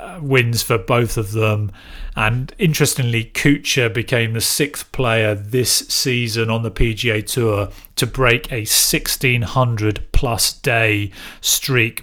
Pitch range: 105-125 Hz